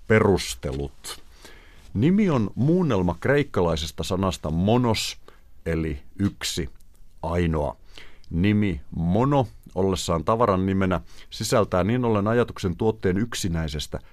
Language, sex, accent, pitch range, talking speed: Finnish, male, native, 80-100 Hz, 90 wpm